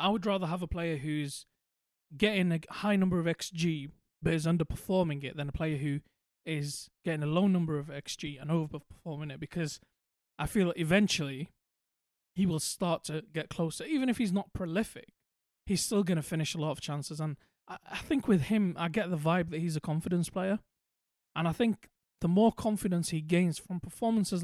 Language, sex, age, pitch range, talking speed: English, male, 20-39, 155-190 Hz, 195 wpm